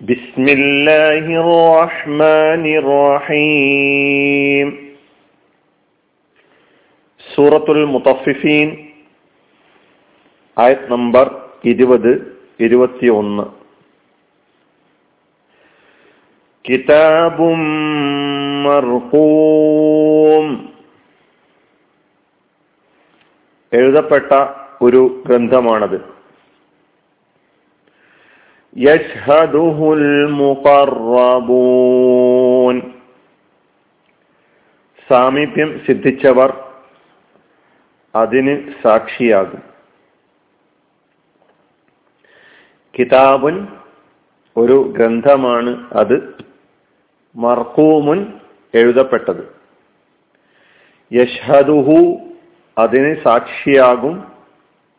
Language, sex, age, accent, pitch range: Malayalam, male, 50-69, native, 125-150 Hz